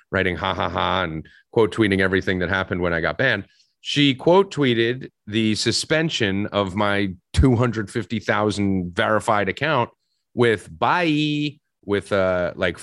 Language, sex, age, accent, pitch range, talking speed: English, male, 30-49, American, 90-120 Hz, 135 wpm